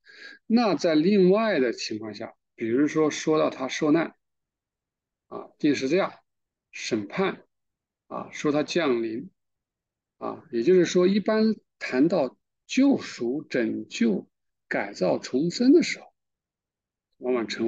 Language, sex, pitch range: Chinese, male, 125-195 Hz